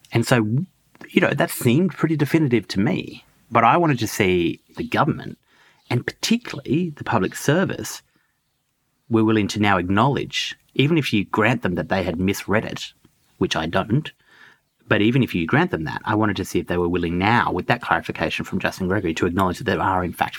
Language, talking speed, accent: English, 205 wpm, Australian